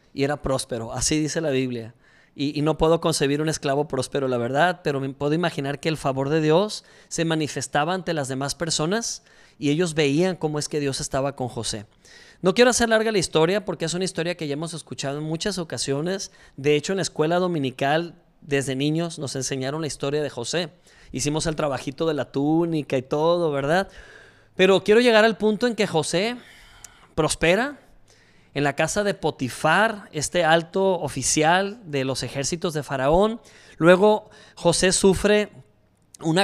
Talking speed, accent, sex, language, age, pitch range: 180 wpm, Mexican, male, Spanish, 30-49, 140-185 Hz